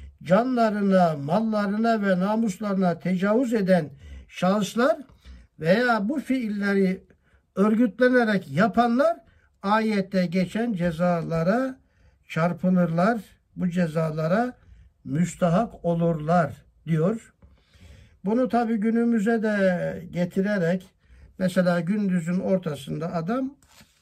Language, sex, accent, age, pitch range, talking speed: Turkish, male, native, 60-79, 175-220 Hz, 75 wpm